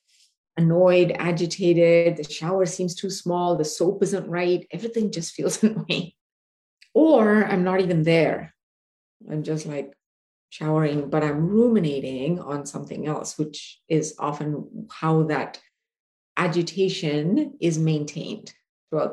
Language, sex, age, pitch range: English, female, 30-49, 165-200 Hz